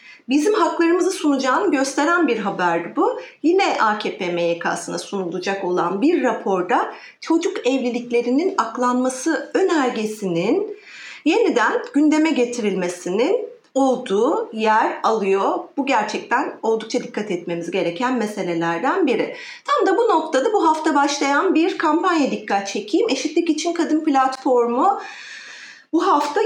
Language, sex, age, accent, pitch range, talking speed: Turkish, female, 40-59, native, 210-335 Hz, 110 wpm